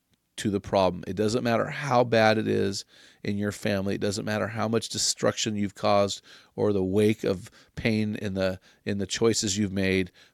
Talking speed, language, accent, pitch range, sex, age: 190 wpm, English, American, 100-115 Hz, male, 40-59